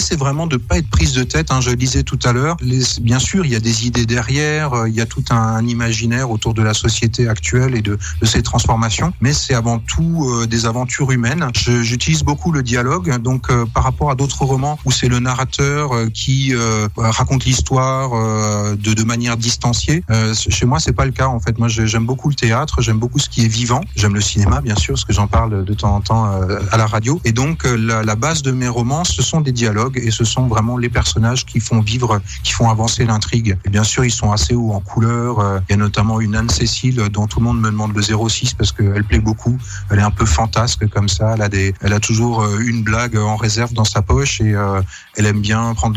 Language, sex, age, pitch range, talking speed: French, male, 30-49, 110-125 Hz, 230 wpm